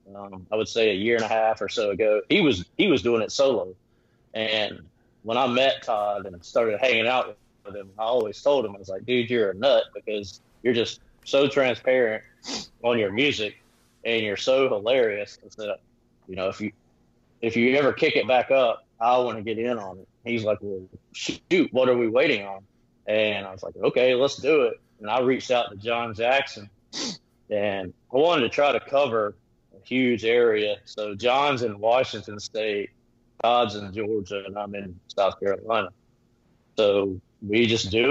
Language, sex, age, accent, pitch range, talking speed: English, male, 30-49, American, 105-125 Hz, 195 wpm